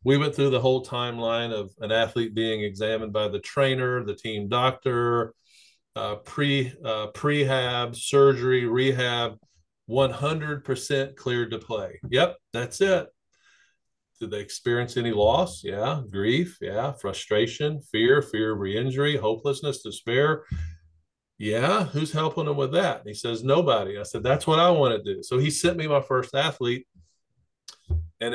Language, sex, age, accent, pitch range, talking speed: English, male, 40-59, American, 115-140 Hz, 150 wpm